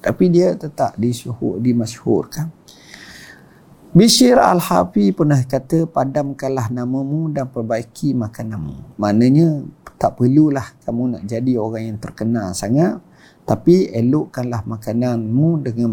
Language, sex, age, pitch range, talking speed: Malay, male, 50-69, 115-155 Hz, 110 wpm